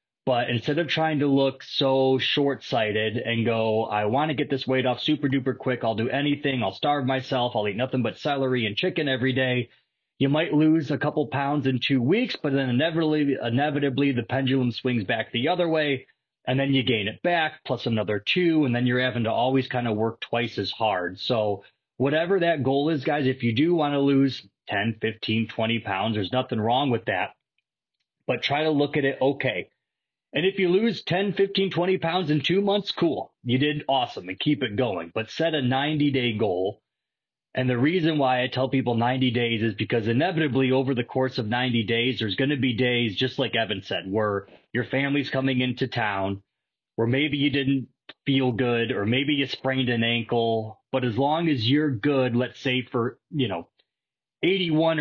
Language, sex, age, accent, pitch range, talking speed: English, male, 30-49, American, 120-145 Hz, 200 wpm